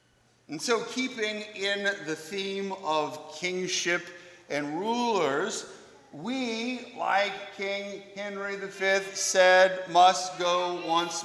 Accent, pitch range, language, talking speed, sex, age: American, 170-225 Hz, English, 100 wpm, male, 40-59